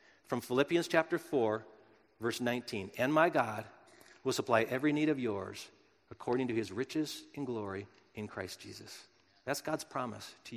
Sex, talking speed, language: male, 160 wpm, English